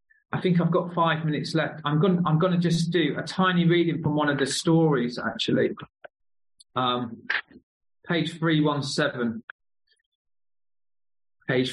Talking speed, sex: 135 wpm, male